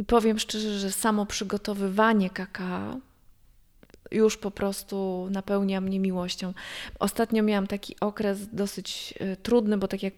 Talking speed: 125 wpm